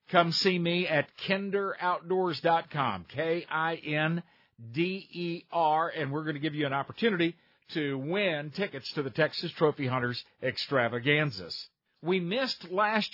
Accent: American